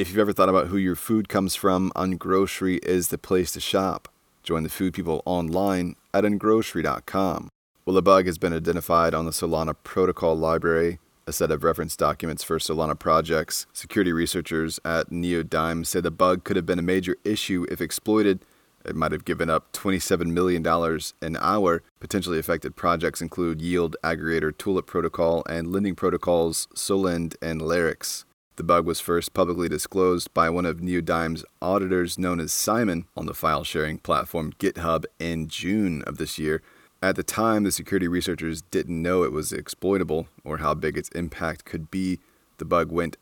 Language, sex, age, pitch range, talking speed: English, male, 30-49, 80-95 Hz, 175 wpm